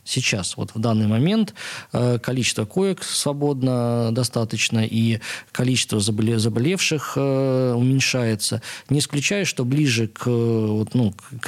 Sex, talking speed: male, 100 wpm